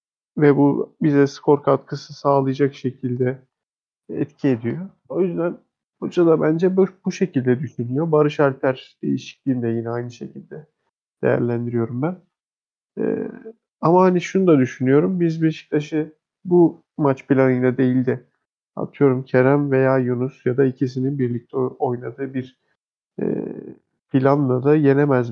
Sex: male